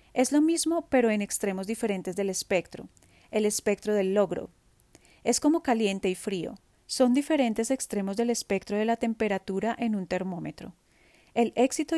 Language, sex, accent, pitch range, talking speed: Spanish, female, Colombian, 195-255 Hz, 155 wpm